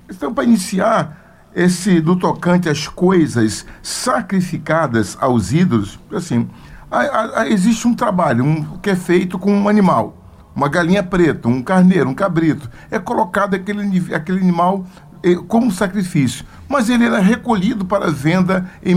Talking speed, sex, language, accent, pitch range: 150 wpm, male, Portuguese, Brazilian, 150-205 Hz